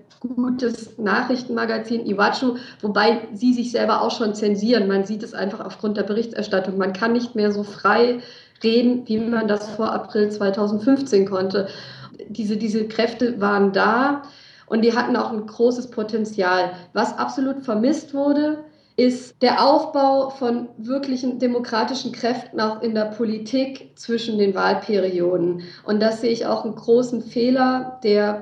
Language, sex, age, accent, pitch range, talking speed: German, female, 50-69, German, 215-250 Hz, 150 wpm